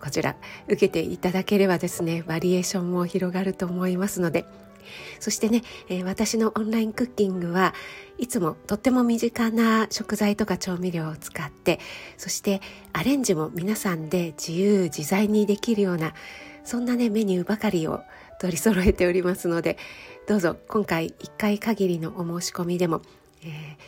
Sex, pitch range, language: female, 175-220 Hz, Japanese